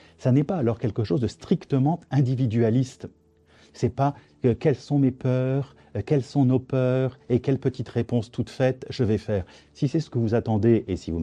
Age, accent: 50-69, French